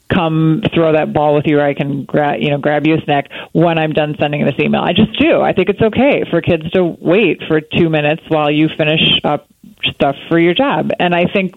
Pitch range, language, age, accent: 150-185 Hz, English, 30-49, American